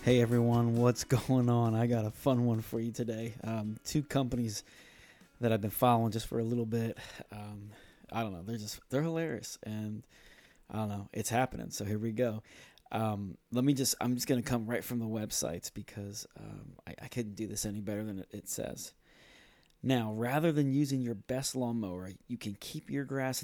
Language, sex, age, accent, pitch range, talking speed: English, male, 20-39, American, 110-130 Hz, 205 wpm